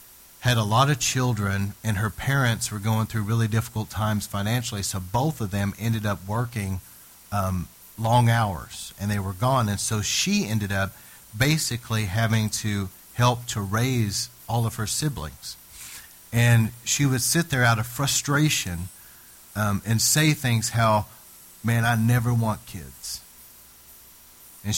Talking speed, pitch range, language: 155 wpm, 95-120 Hz, English